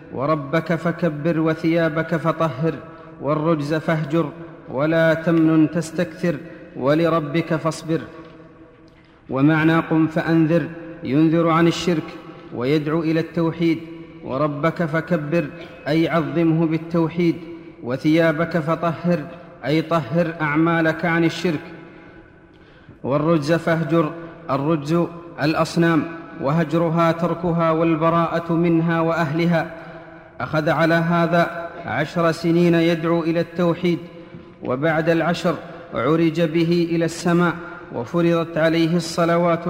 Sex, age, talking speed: male, 40-59, 90 wpm